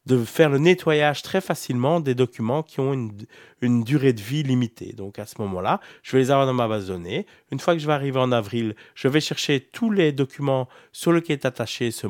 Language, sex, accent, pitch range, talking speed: French, male, French, 110-135 Hz, 235 wpm